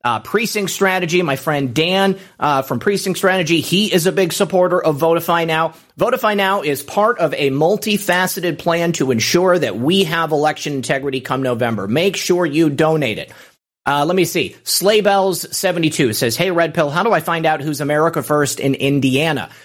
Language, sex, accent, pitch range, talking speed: English, male, American, 140-185 Hz, 180 wpm